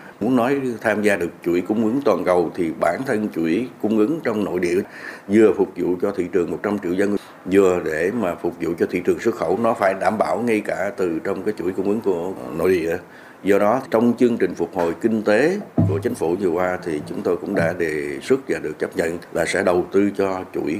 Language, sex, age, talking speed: Vietnamese, male, 60-79, 240 wpm